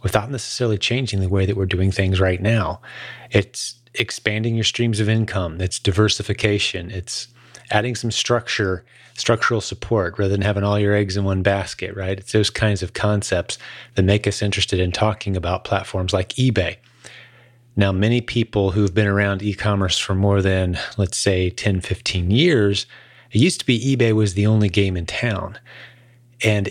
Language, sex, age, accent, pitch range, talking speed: English, male, 30-49, American, 95-120 Hz, 175 wpm